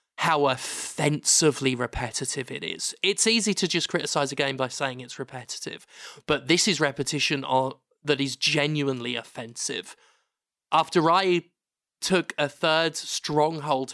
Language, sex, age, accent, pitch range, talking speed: English, male, 20-39, British, 130-150 Hz, 130 wpm